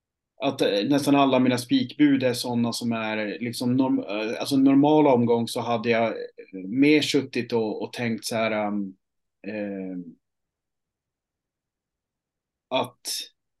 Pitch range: 115-150 Hz